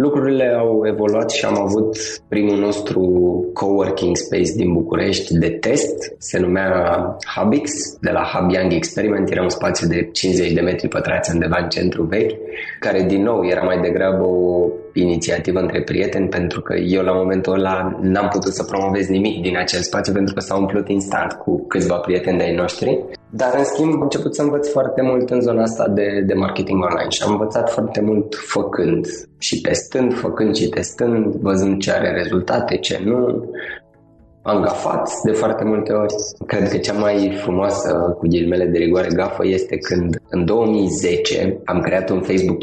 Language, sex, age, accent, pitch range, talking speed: Romanian, male, 20-39, native, 95-115 Hz, 175 wpm